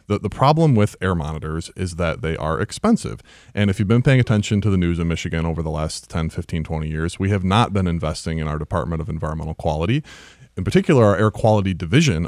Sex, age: male, 30-49